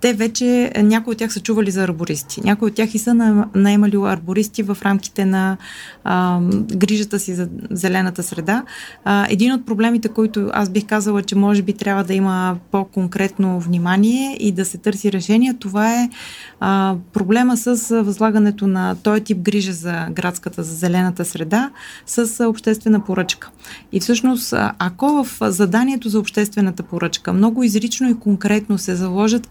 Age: 20-39